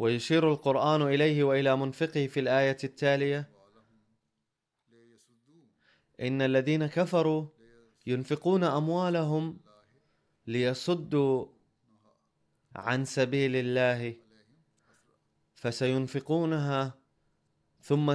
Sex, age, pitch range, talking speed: male, 20-39, 125-155 Hz, 65 wpm